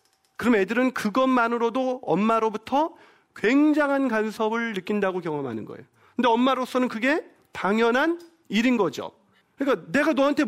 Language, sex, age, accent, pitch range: Korean, male, 40-59, native, 170-255 Hz